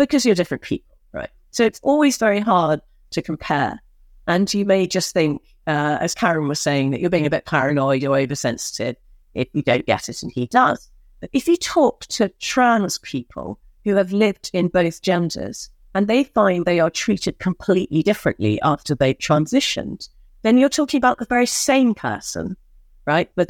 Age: 50-69